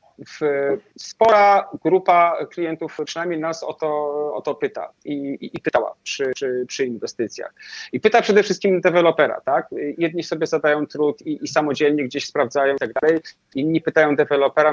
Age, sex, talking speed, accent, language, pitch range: 30-49, male, 165 wpm, native, Polish, 145-185 Hz